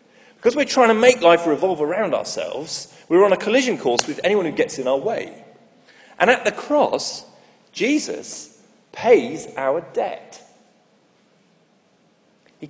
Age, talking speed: 40-59, 140 wpm